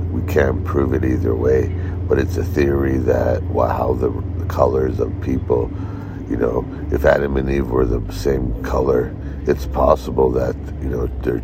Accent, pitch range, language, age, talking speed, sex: American, 70-100 Hz, English, 60-79, 170 wpm, male